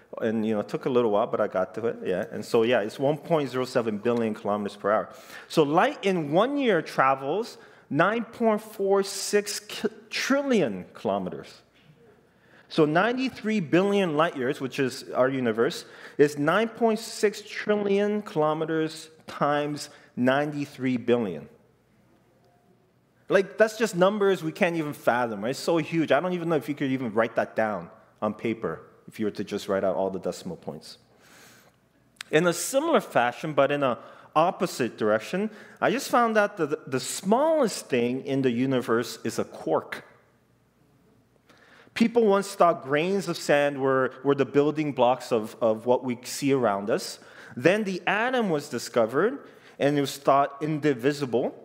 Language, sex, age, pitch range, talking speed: English, male, 30-49, 130-195 Hz, 160 wpm